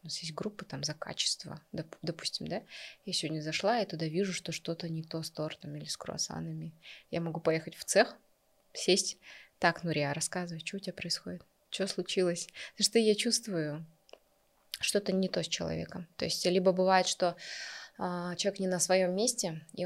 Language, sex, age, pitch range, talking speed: Russian, female, 20-39, 165-210 Hz, 180 wpm